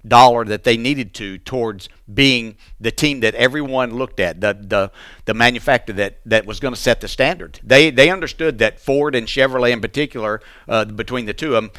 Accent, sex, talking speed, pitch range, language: American, male, 205 wpm, 115-140 Hz, English